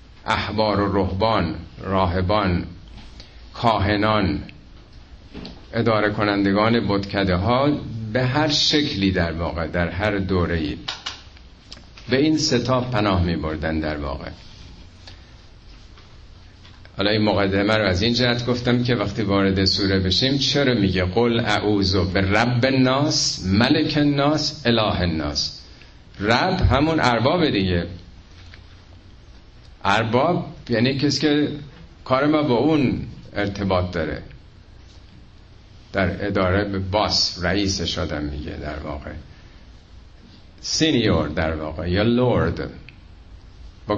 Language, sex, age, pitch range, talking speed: Persian, male, 50-69, 90-115 Hz, 100 wpm